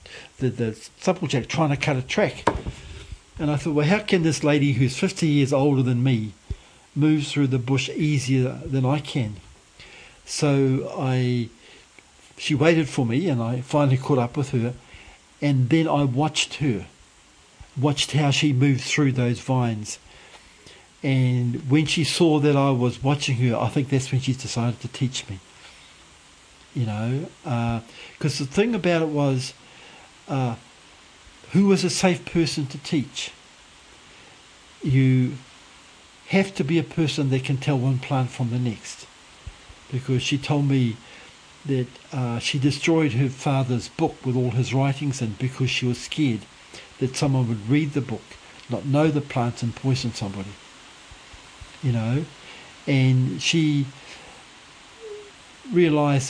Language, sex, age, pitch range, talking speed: English, male, 60-79, 120-150 Hz, 150 wpm